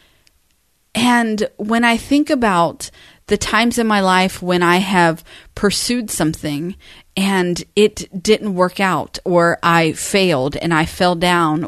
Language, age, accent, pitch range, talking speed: English, 40-59, American, 180-230 Hz, 140 wpm